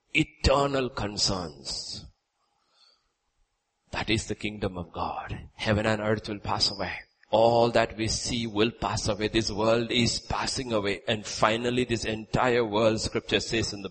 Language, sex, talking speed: English, male, 150 wpm